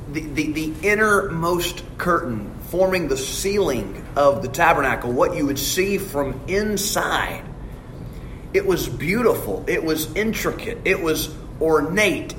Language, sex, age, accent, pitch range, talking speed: English, male, 30-49, American, 155-230 Hz, 125 wpm